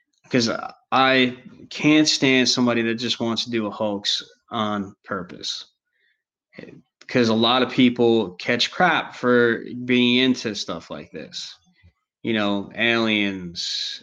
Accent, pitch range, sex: American, 105-130 Hz, male